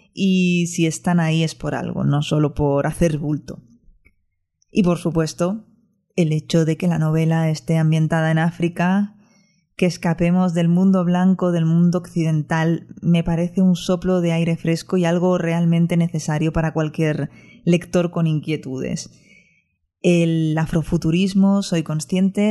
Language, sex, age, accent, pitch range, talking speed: Spanish, female, 20-39, Spanish, 155-180 Hz, 140 wpm